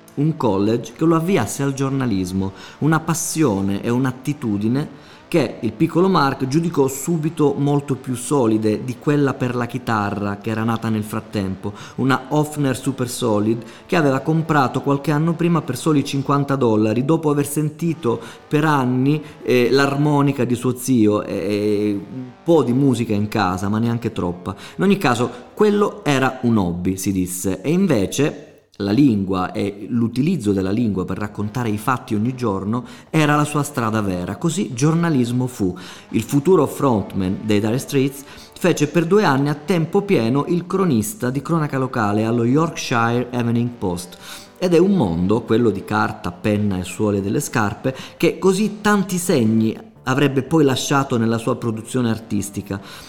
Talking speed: 160 wpm